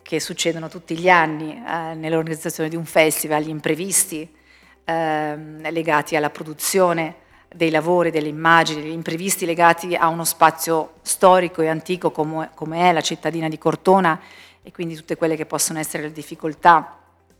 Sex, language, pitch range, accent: female, Italian, 155-175 Hz, native